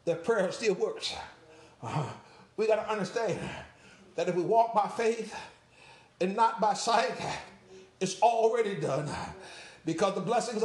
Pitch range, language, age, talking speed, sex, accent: 210-255 Hz, English, 50-69, 140 wpm, male, American